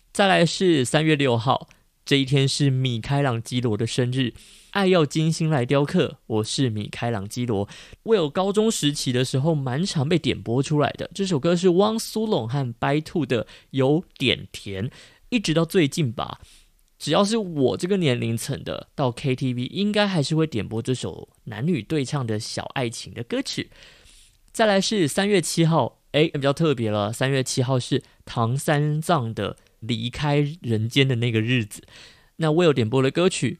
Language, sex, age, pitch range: Chinese, male, 20-39, 115-160 Hz